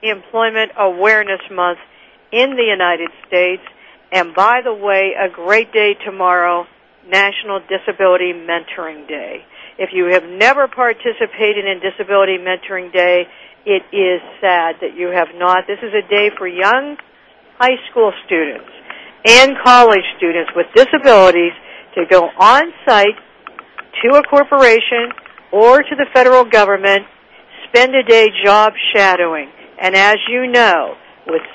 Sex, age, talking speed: female, 60-79, 135 wpm